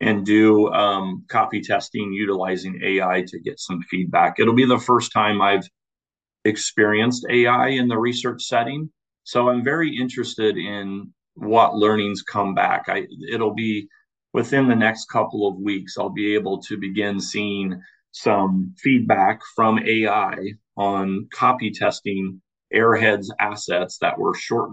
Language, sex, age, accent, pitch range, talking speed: English, male, 40-59, American, 100-115 Hz, 145 wpm